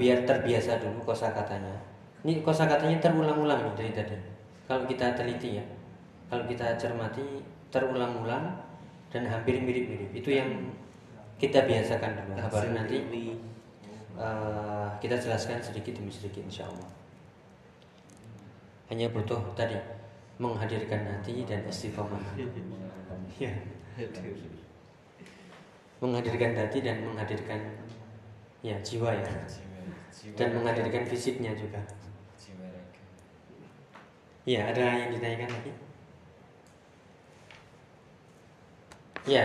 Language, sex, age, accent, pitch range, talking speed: Indonesian, male, 20-39, native, 105-130 Hz, 90 wpm